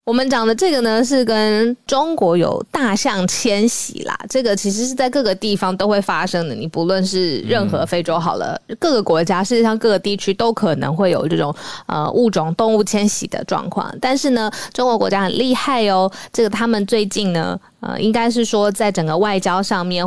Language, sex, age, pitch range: Chinese, female, 20-39, 180-235 Hz